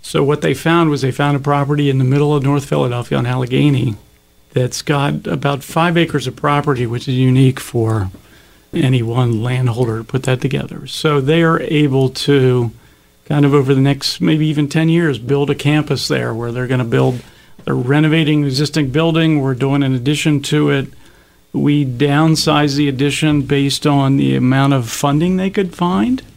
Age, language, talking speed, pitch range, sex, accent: 50-69, English, 185 wpm, 125-150 Hz, male, American